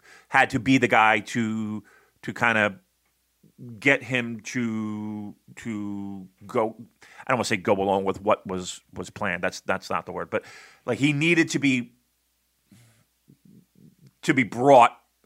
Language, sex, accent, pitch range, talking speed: English, male, American, 110-145 Hz, 155 wpm